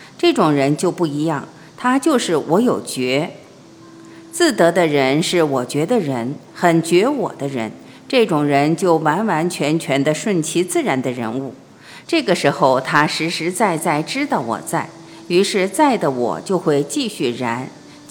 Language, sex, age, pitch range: Chinese, female, 50-69, 150-235 Hz